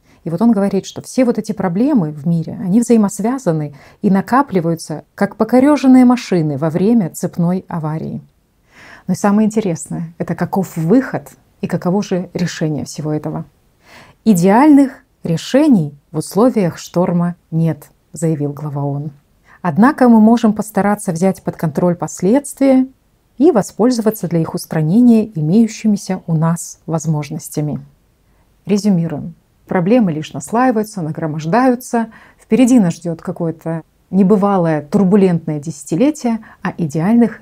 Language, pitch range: Russian, 165-210 Hz